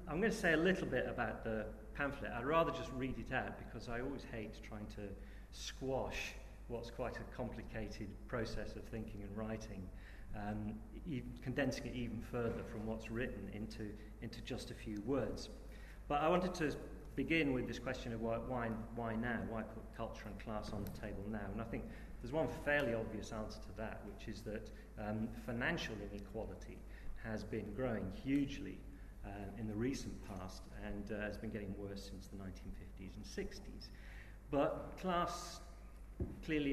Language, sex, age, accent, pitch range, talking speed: English, male, 40-59, British, 100-120 Hz, 175 wpm